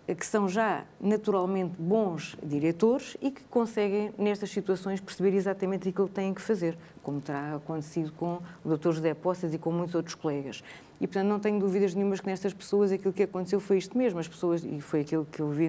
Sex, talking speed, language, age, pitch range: female, 205 wpm, Portuguese, 20-39, 165-195 Hz